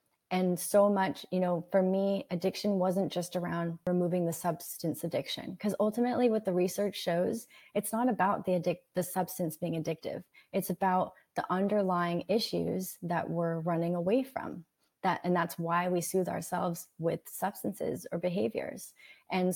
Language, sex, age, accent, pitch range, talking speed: English, female, 30-49, American, 175-205 Hz, 160 wpm